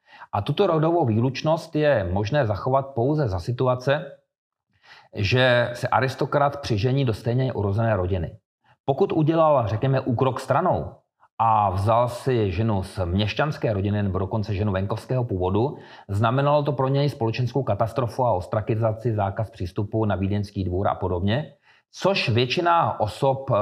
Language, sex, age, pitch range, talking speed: Czech, male, 40-59, 105-140 Hz, 135 wpm